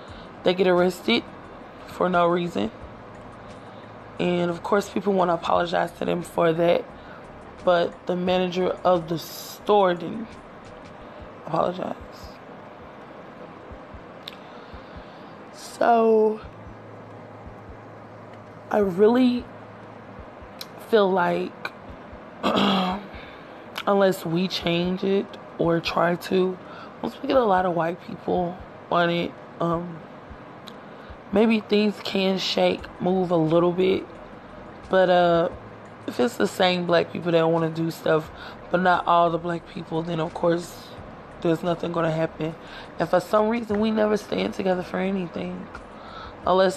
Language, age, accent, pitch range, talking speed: English, 20-39, American, 165-190 Hz, 120 wpm